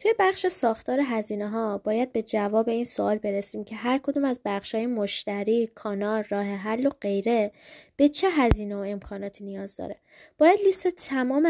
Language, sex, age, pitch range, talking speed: Persian, female, 20-39, 210-265 Hz, 170 wpm